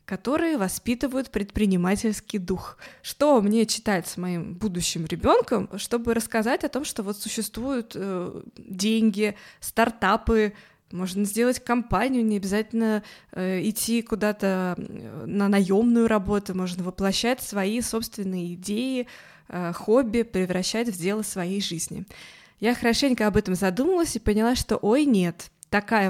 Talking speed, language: 125 wpm, Russian